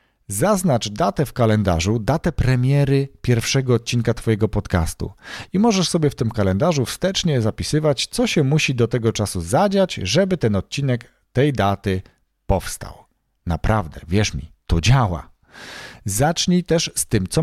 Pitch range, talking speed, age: 95-135 Hz, 140 wpm, 40-59